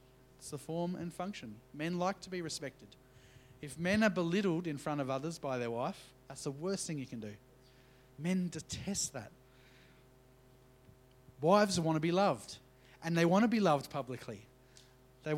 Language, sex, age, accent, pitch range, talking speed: English, male, 30-49, Australian, 130-165 Hz, 170 wpm